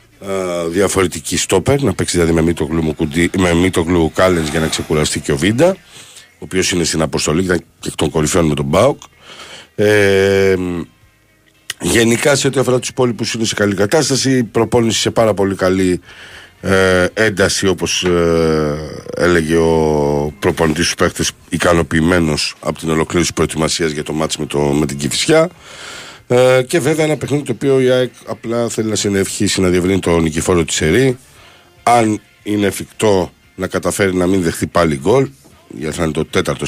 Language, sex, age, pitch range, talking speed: Greek, male, 50-69, 80-105 Hz, 155 wpm